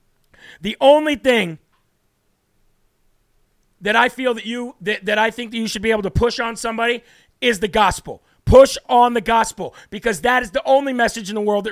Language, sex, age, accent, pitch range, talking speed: English, male, 40-59, American, 205-240 Hz, 195 wpm